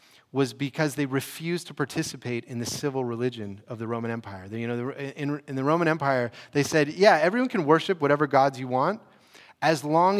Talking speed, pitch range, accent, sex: 175 wpm, 130-170 Hz, American, male